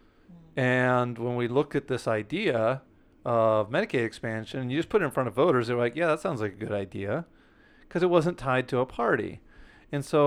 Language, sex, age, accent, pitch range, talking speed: English, male, 40-59, American, 115-145 Hz, 210 wpm